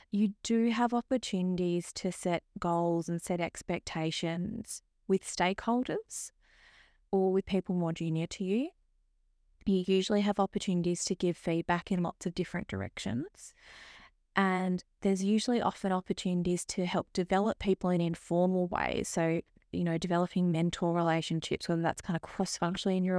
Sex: female